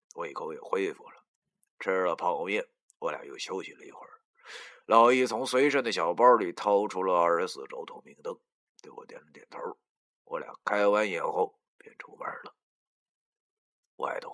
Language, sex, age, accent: Chinese, male, 30-49, native